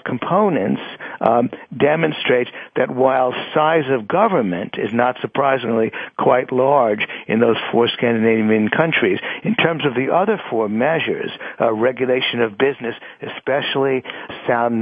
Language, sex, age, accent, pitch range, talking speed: English, male, 60-79, American, 115-140 Hz, 120 wpm